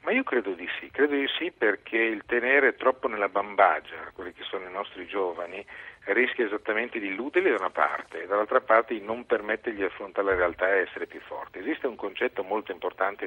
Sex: male